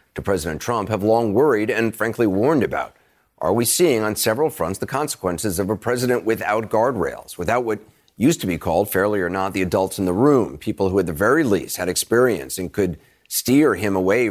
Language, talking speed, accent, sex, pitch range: English, 210 wpm, American, male, 100-120 Hz